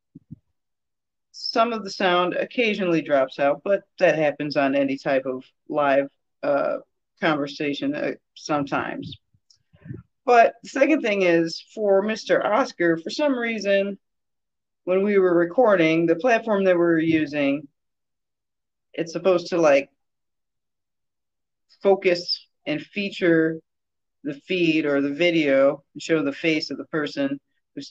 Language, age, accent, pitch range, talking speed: English, 40-59, American, 155-210 Hz, 125 wpm